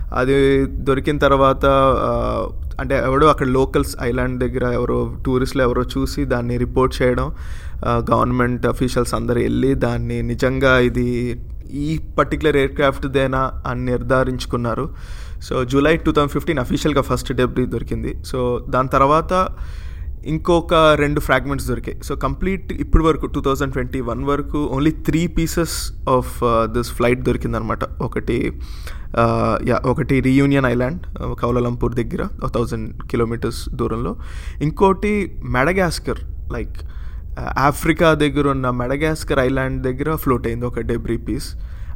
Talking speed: 95 wpm